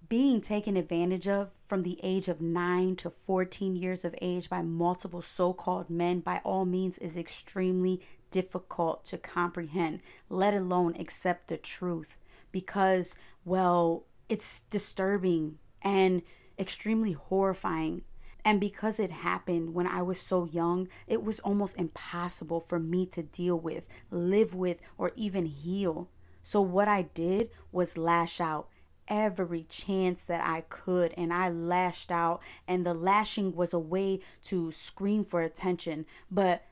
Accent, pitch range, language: American, 175-200 Hz, English